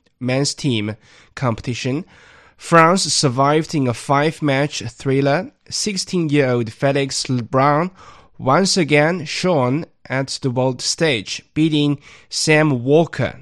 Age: 20-39